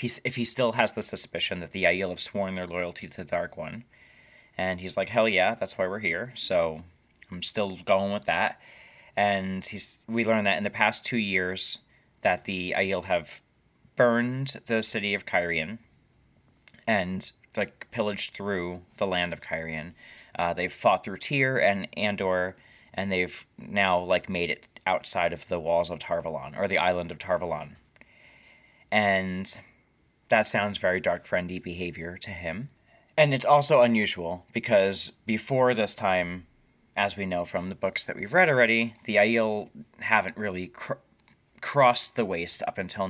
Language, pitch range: English, 90-120 Hz